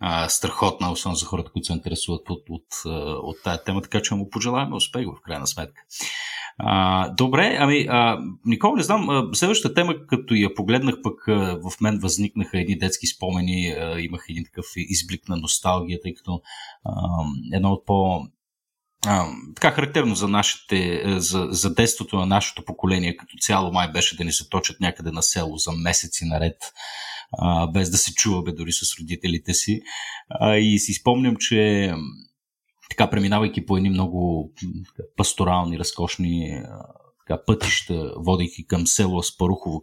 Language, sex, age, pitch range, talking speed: Bulgarian, male, 30-49, 90-105 Hz, 155 wpm